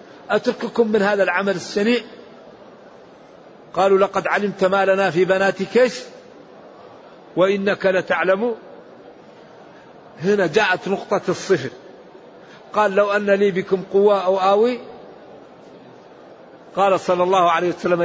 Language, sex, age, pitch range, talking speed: Arabic, male, 50-69, 180-215 Hz, 105 wpm